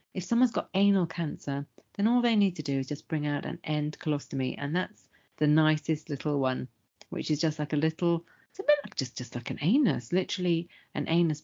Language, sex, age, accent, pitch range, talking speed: English, female, 40-59, British, 145-180 Hz, 220 wpm